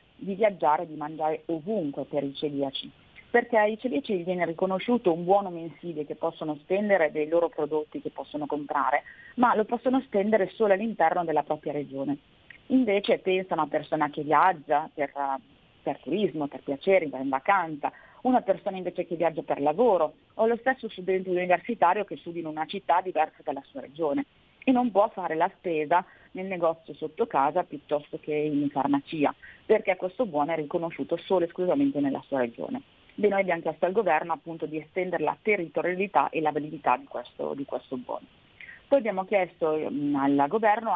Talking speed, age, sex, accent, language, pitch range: 175 wpm, 30-49, female, native, Italian, 155-200 Hz